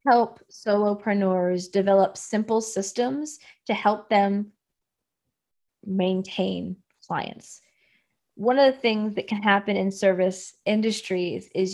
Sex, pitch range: female, 195-240 Hz